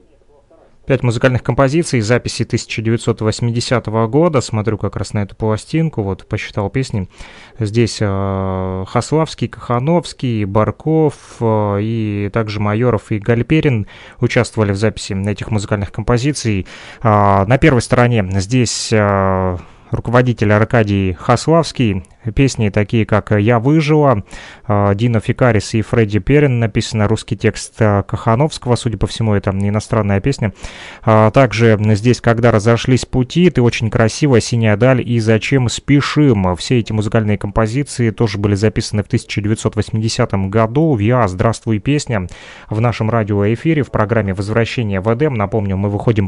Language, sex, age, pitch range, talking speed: Russian, male, 20-39, 105-120 Hz, 125 wpm